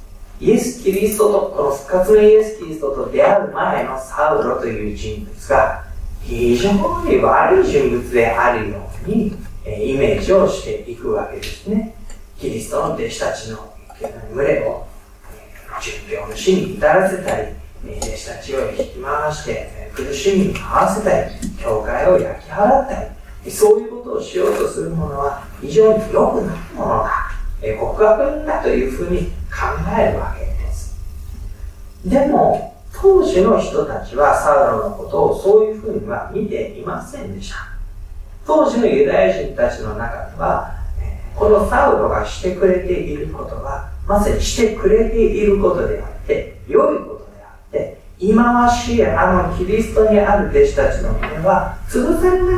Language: Japanese